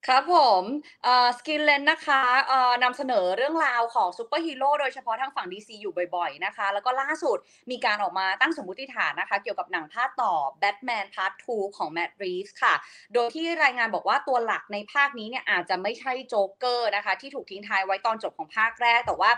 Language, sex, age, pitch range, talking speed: English, female, 20-39, 200-275 Hz, 30 wpm